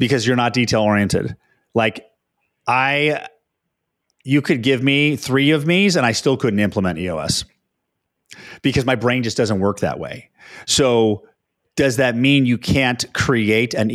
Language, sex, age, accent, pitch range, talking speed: English, male, 30-49, American, 105-135 Hz, 150 wpm